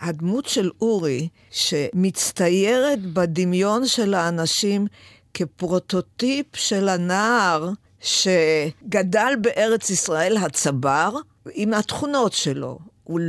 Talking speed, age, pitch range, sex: 80 wpm, 50-69, 155-215 Hz, female